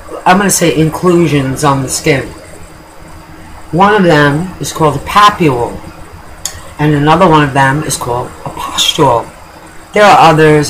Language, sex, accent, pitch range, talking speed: English, female, American, 105-160 Hz, 150 wpm